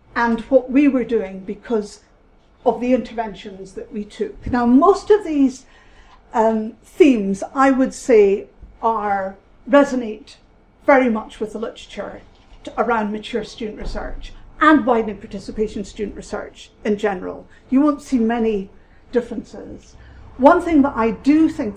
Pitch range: 220-290 Hz